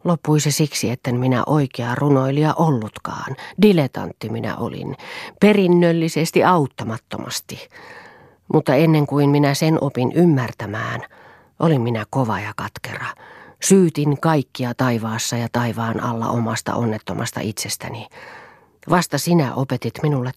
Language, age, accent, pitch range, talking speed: Finnish, 40-59, native, 120-160 Hz, 110 wpm